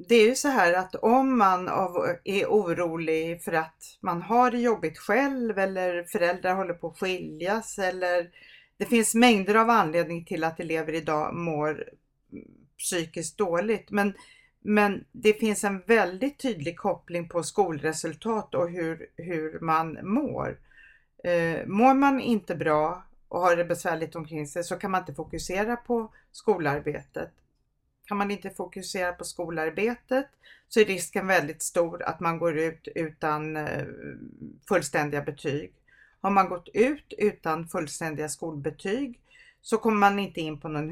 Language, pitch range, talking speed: Swedish, 165-215 Hz, 145 wpm